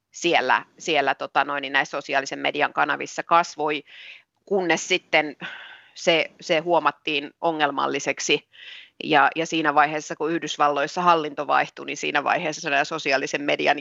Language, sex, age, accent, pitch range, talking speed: Finnish, female, 30-49, native, 155-180 Hz, 125 wpm